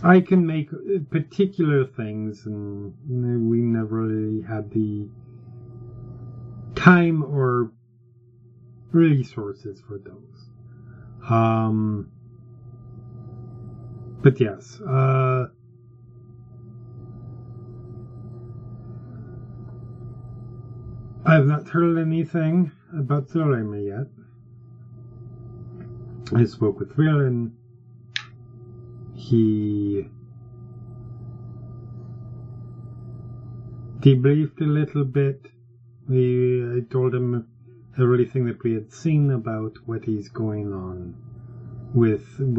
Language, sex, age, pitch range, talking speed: English, male, 40-59, 120-125 Hz, 75 wpm